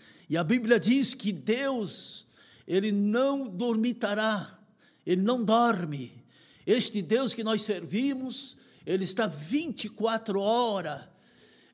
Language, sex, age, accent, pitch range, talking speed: Portuguese, male, 60-79, Brazilian, 180-240 Hz, 105 wpm